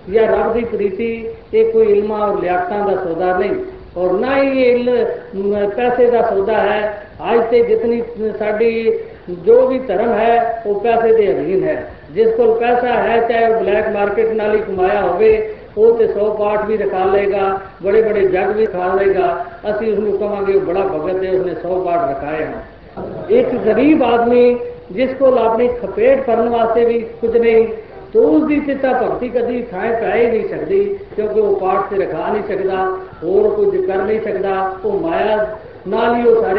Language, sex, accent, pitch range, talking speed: Hindi, female, native, 205-270 Hz, 160 wpm